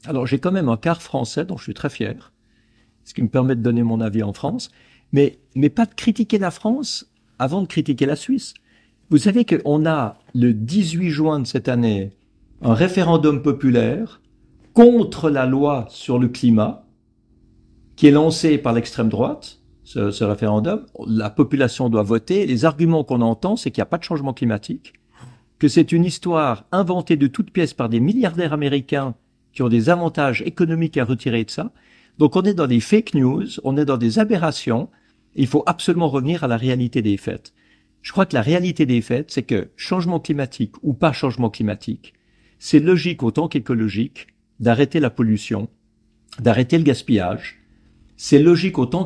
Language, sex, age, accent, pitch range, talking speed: French, male, 50-69, French, 115-165 Hz, 180 wpm